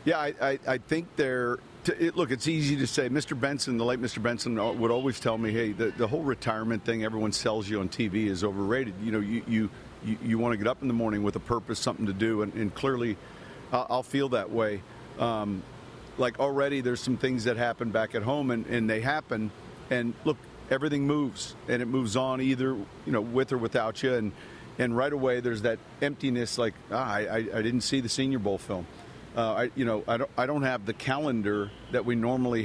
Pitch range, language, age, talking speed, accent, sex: 110-130 Hz, English, 50-69, 230 wpm, American, male